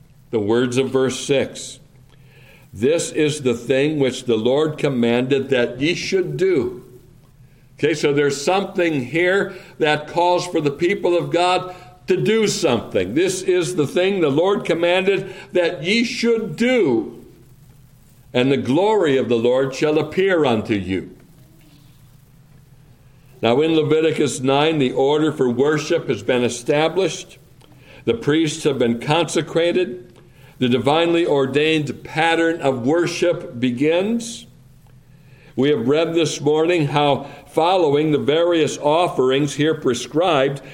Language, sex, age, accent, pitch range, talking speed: English, male, 60-79, American, 130-165 Hz, 130 wpm